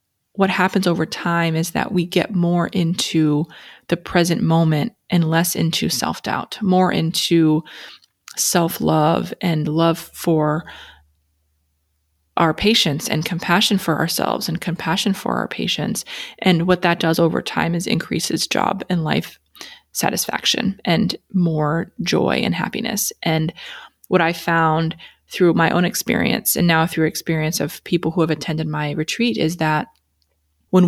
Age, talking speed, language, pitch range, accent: 20-39, 145 wpm, English, 160-185 Hz, American